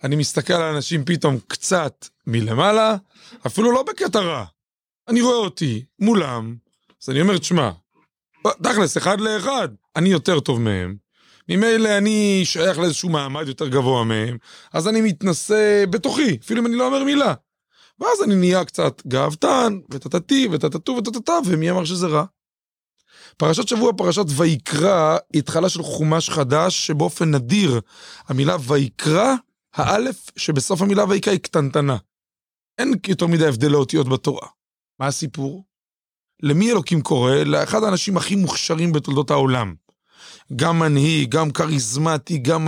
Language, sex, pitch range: Hebrew, male, 150-210 Hz